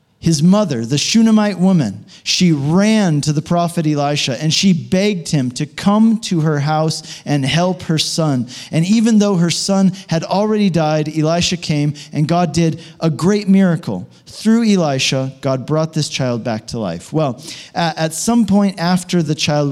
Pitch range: 140-180 Hz